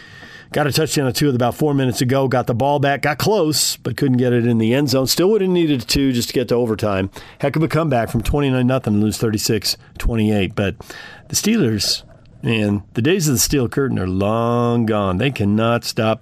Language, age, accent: English, 40-59, American